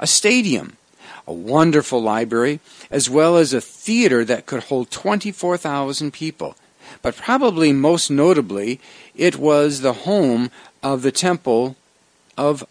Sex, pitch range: male, 130-170 Hz